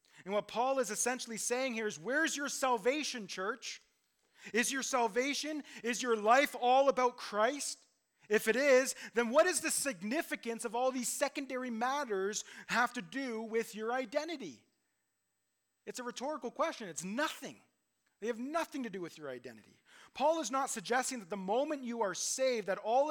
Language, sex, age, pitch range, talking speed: English, male, 30-49, 190-245 Hz, 170 wpm